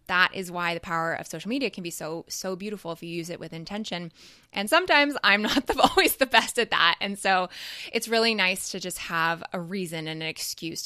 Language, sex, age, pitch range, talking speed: English, female, 20-39, 170-215 Hz, 225 wpm